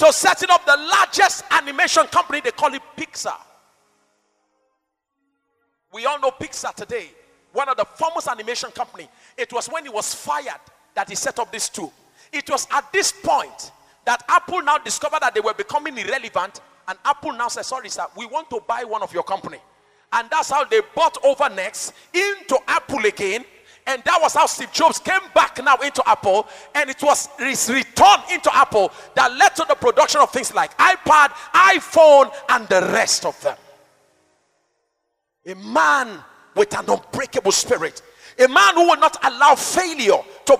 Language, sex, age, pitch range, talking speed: English, male, 40-59, 270-375 Hz, 175 wpm